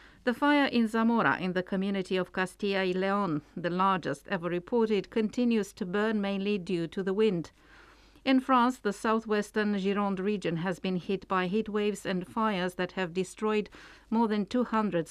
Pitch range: 180-215 Hz